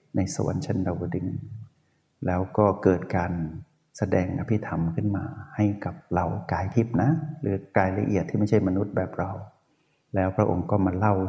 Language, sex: Thai, male